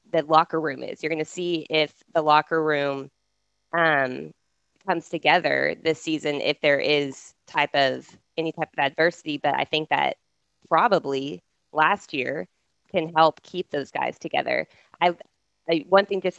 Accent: American